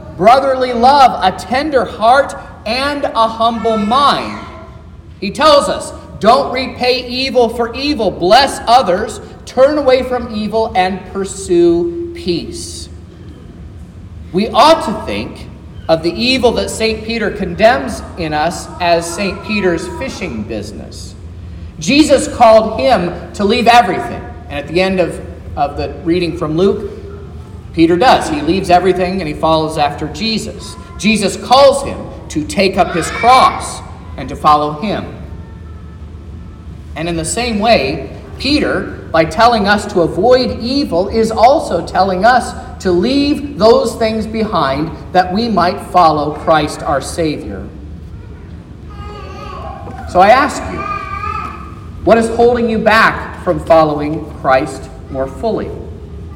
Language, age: English, 40-59